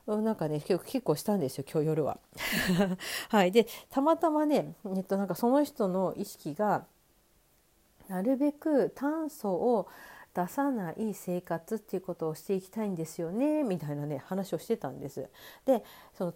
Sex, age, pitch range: female, 50-69, 165-245 Hz